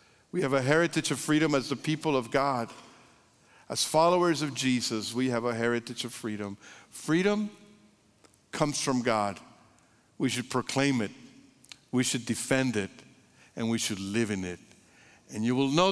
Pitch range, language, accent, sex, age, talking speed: 105-125 Hz, English, American, male, 50-69, 160 wpm